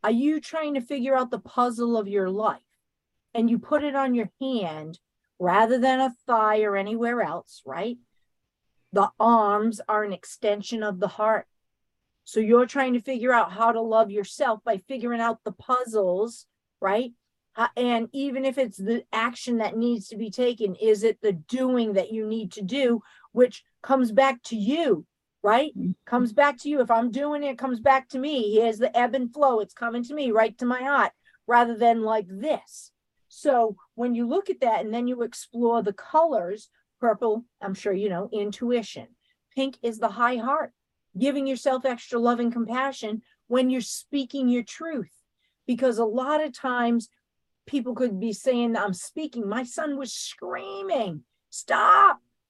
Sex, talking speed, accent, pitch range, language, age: female, 180 wpm, American, 220-265 Hz, English, 40-59